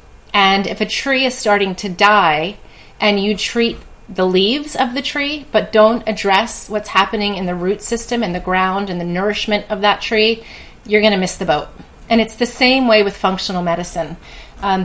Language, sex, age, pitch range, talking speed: English, female, 30-49, 190-230 Hz, 200 wpm